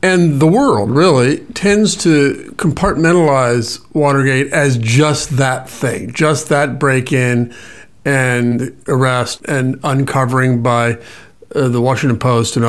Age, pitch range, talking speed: 50-69, 130-175 Hz, 125 wpm